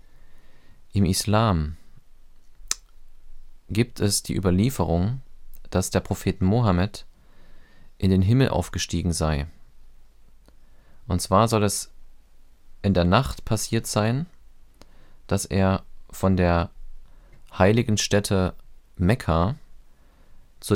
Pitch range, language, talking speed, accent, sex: 85-105 Hz, German, 95 wpm, German, male